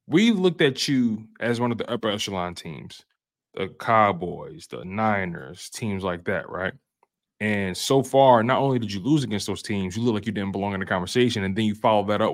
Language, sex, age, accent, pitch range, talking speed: English, male, 20-39, American, 100-115 Hz, 220 wpm